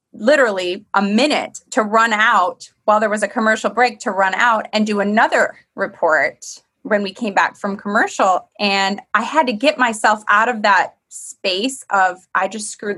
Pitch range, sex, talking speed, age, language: 200-245 Hz, female, 180 wpm, 20-39, English